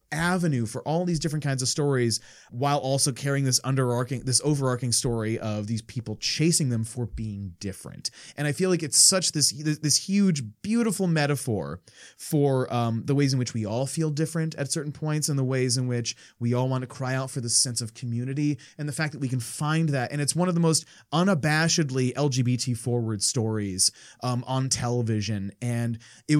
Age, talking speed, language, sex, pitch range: 30-49, 200 wpm, English, male, 115-150 Hz